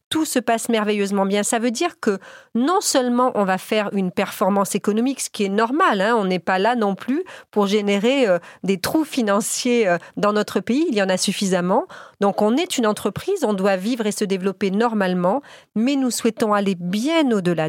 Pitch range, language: 200-255 Hz, French